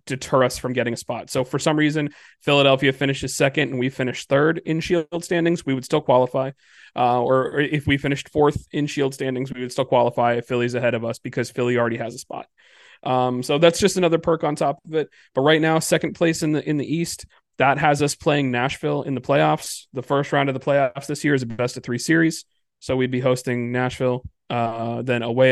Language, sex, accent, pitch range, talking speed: English, male, American, 125-150 Hz, 235 wpm